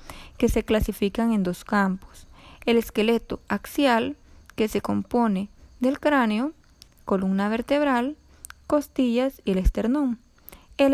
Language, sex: Spanish, female